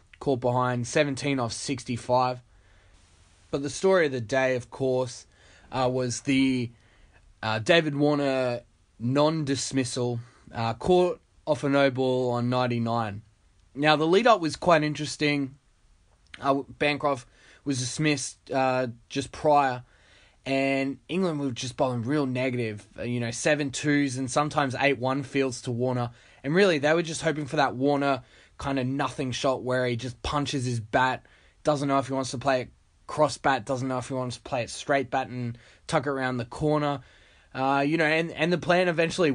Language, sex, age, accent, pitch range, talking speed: English, male, 20-39, Australian, 125-150 Hz, 175 wpm